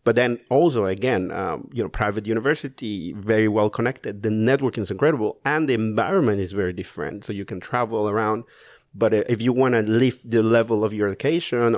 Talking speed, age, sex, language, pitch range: 195 wpm, 50-69, male, English, 105-125 Hz